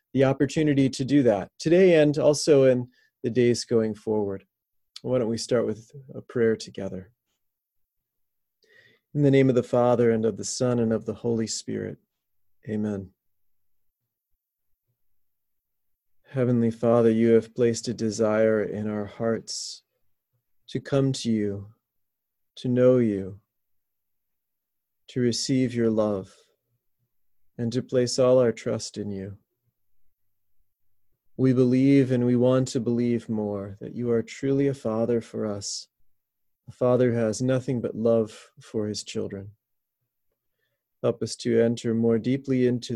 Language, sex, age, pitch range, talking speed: English, male, 30-49, 105-125 Hz, 140 wpm